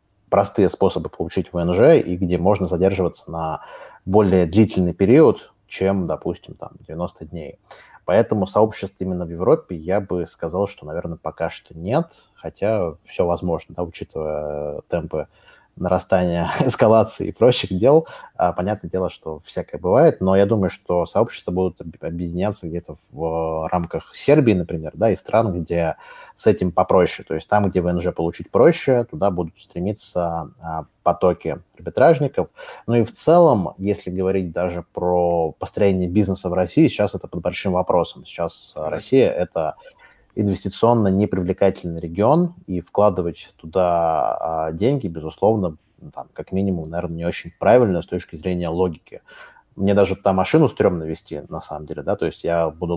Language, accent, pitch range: Russian, native, 85-100 Hz